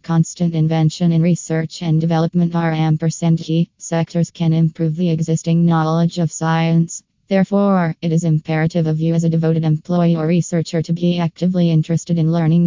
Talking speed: 165 wpm